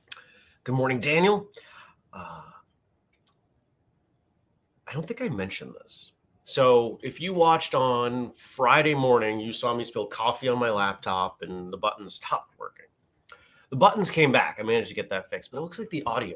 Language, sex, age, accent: English, male, 30-49, American